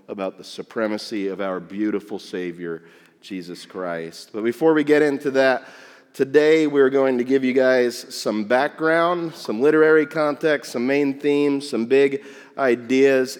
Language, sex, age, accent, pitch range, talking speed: English, male, 30-49, American, 110-145 Hz, 150 wpm